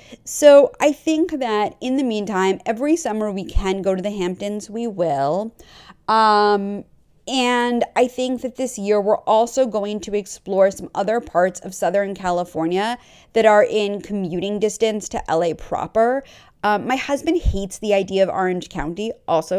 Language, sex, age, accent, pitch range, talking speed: English, female, 30-49, American, 180-245 Hz, 160 wpm